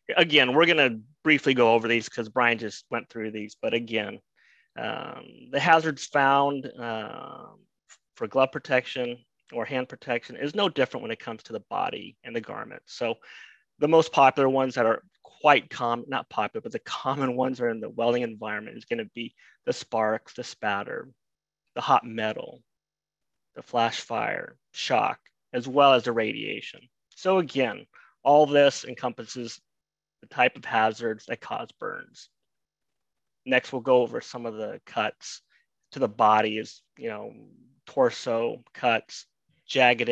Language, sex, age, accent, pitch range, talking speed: English, male, 30-49, American, 115-150 Hz, 160 wpm